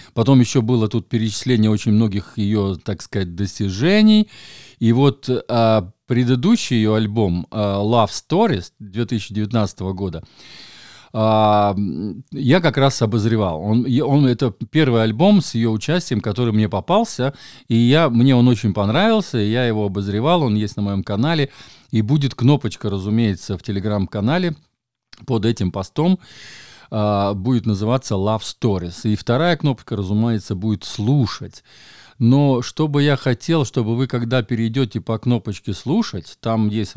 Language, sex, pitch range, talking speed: Russian, male, 100-125 Hz, 130 wpm